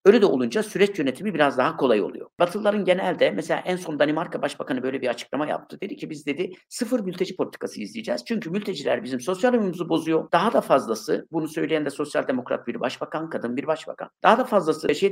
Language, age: Turkish, 60-79